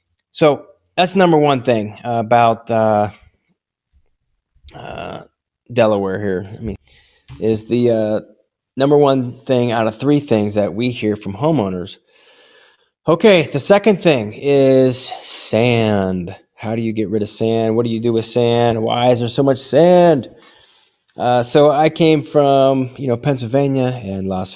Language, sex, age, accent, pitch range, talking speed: English, male, 30-49, American, 105-135 Hz, 150 wpm